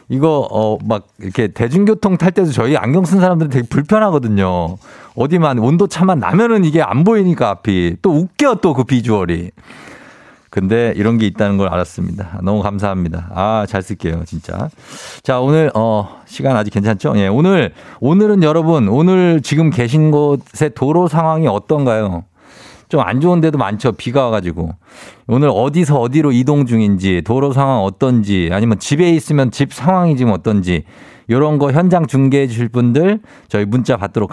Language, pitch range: Korean, 105-170 Hz